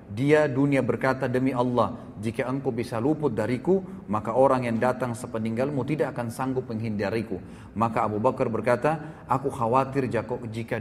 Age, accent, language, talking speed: 30-49, native, Indonesian, 145 wpm